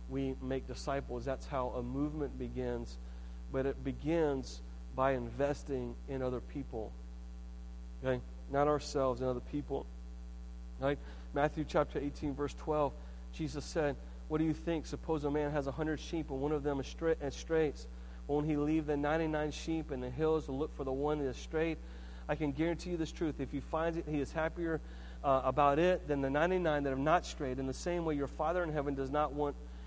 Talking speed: 200 wpm